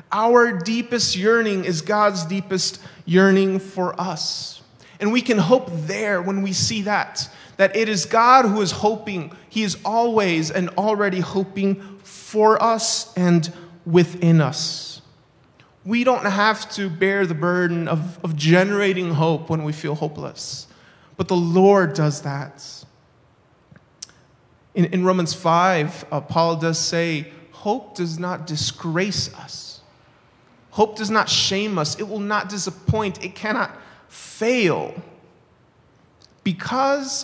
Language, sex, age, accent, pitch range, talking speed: English, male, 30-49, American, 160-195 Hz, 130 wpm